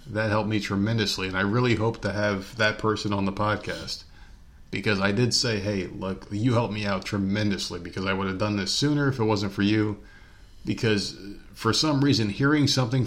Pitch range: 95-110 Hz